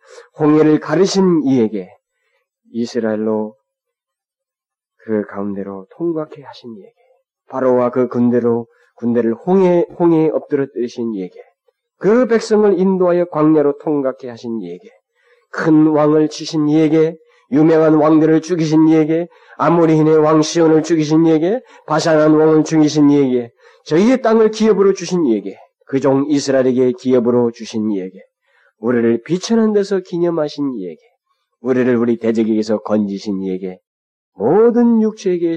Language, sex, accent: Korean, male, native